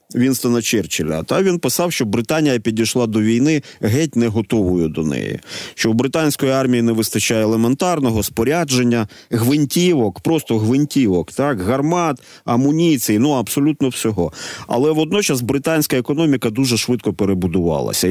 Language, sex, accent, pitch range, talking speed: Ukrainian, male, native, 110-145 Hz, 130 wpm